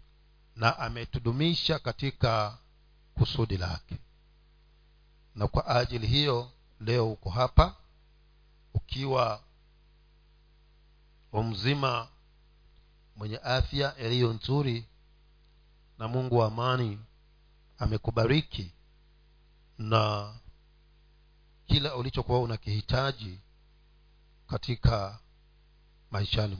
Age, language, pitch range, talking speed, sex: 50-69, Swahili, 110-145 Hz, 65 wpm, male